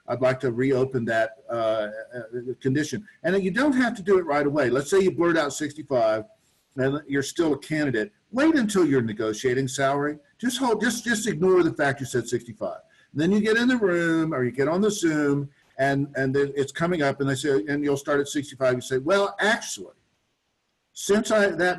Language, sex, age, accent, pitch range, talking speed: English, male, 50-69, American, 125-165 Hz, 205 wpm